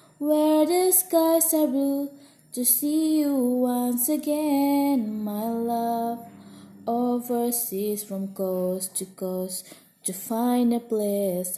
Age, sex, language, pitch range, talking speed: 20-39, female, Indonesian, 210-275 Hz, 110 wpm